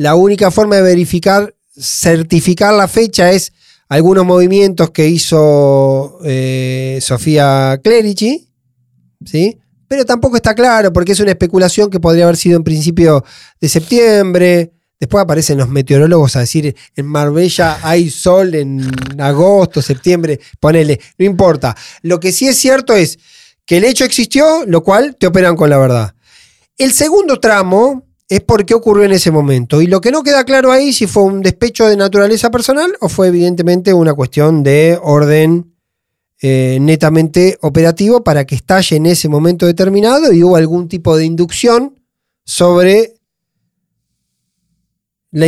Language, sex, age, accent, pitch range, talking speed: Spanish, male, 20-39, Argentinian, 155-205 Hz, 150 wpm